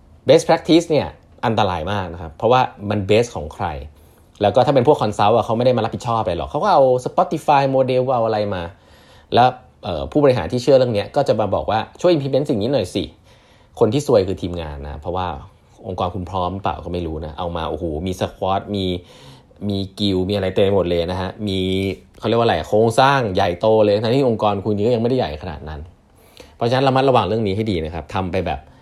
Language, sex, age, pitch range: English, male, 20-39, 90-130 Hz